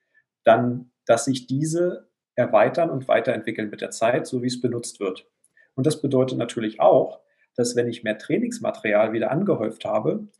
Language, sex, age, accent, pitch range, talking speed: German, male, 40-59, German, 120-140 Hz, 160 wpm